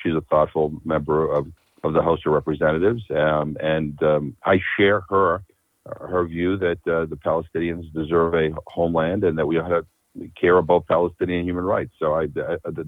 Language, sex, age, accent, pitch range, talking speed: English, male, 50-69, American, 75-90 Hz, 175 wpm